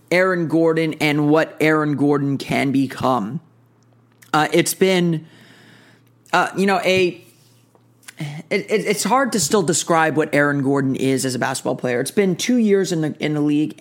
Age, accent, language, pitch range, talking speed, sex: 30-49, American, English, 145-175 Hz, 165 wpm, male